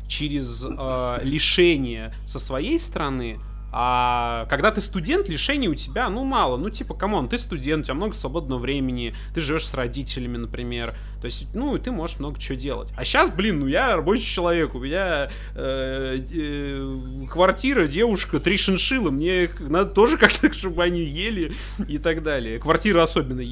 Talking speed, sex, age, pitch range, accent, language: 170 wpm, male, 20-39, 130-180 Hz, native, Russian